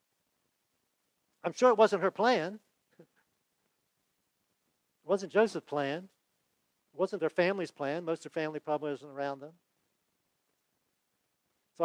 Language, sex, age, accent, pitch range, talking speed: English, male, 50-69, American, 140-195 Hz, 120 wpm